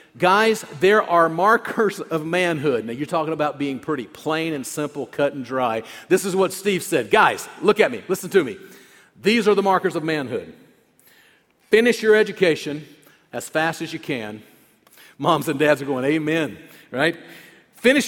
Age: 50-69